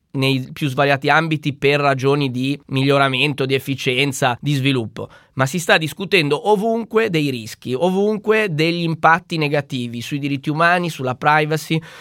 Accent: native